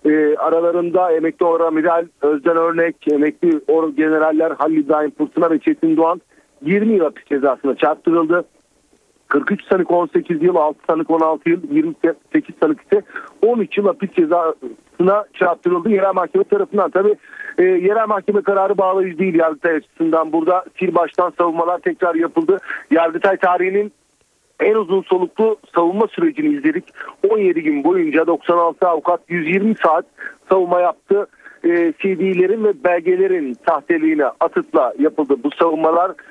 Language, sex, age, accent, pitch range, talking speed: Turkish, male, 50-69, native, 165-210 Hz, 135 wpm